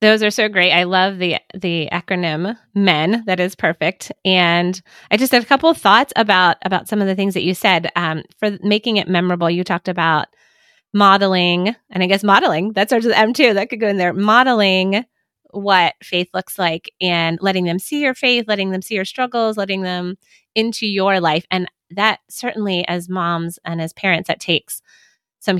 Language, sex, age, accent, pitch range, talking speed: English, female, 20-39, American, 175-210 Hz, 200 wpm